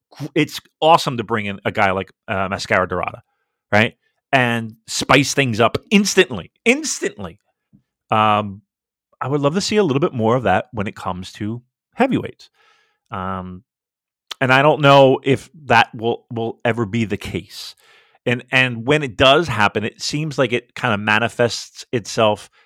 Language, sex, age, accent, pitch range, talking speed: English, male, 30-49, American, 105-140 Hz, 165 wpm